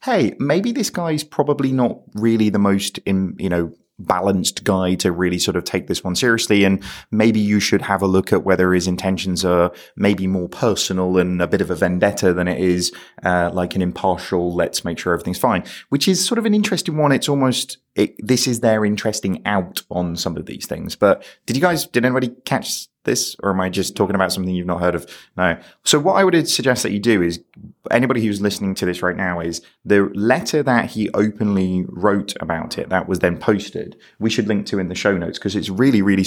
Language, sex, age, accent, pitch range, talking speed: English, male, 20-39, British, 90-110 Hz, 225 wpm